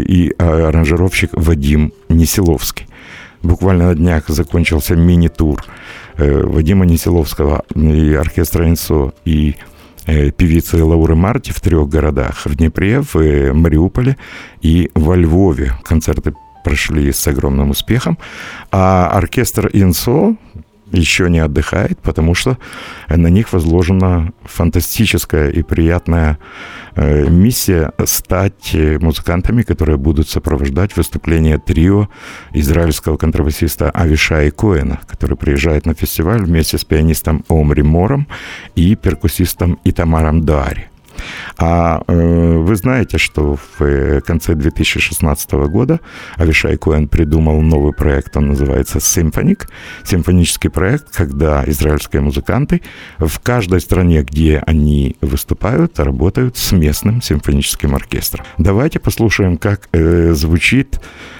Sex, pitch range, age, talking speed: male, 75-95 Hz, 60-79, 110 wpm